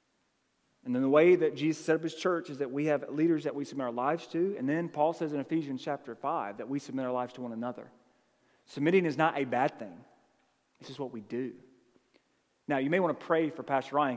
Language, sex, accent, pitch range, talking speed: English, male, American, 130-175 Hz, 240 wpm